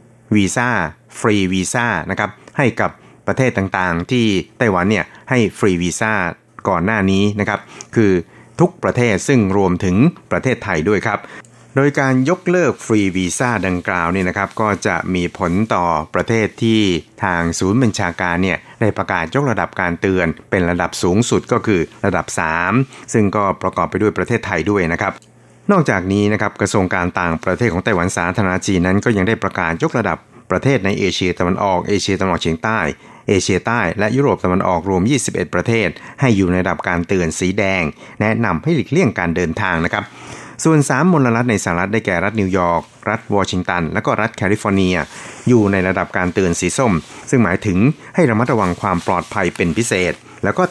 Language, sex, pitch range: Thai, male, 90-115 Hz